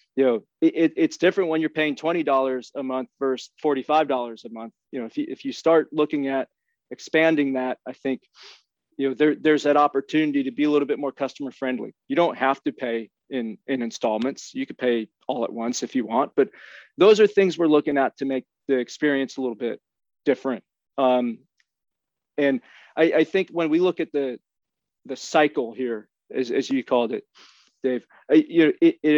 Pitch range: 130-160 Hz